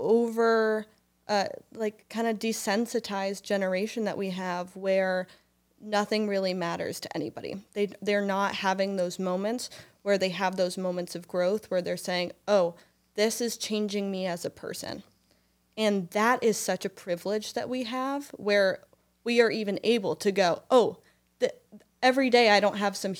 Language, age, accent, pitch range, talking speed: English, 20-39, American, 185-215 Hz, 165 wpm